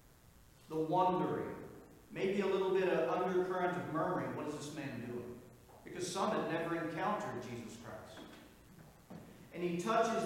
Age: 40-59